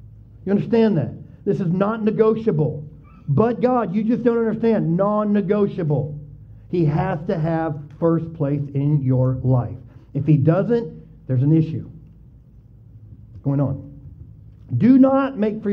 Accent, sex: American, male